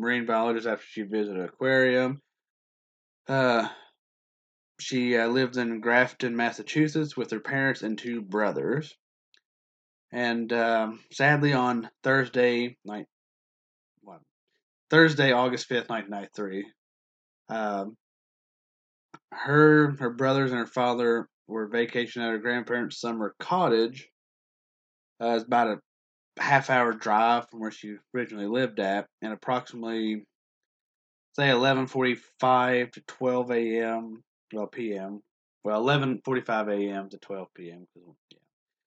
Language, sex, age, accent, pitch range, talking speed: English, male, 20-39, American, 105-125 Hz, 115 wpm